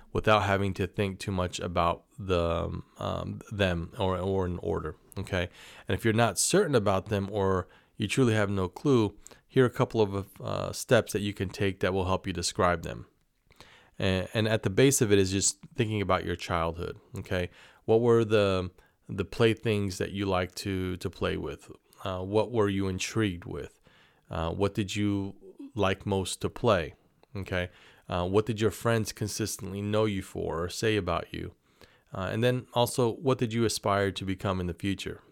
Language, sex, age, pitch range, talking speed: English, male, 30-49, 90-105 Hz, 190 wpm